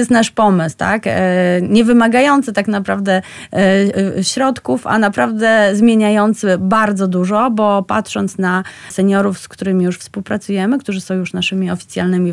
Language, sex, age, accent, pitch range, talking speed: Polish, female, 30-49, native, 185-215 Hz, 140 wpm